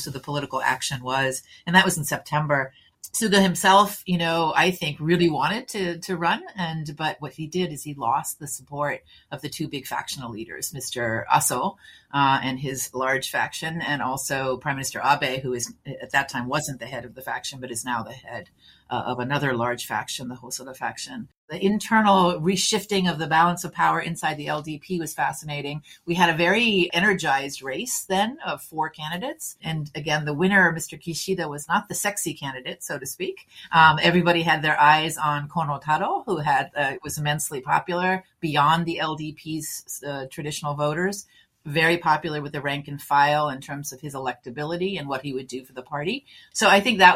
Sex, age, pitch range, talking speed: female, 40-59, 135-170 Hz, 195 wpm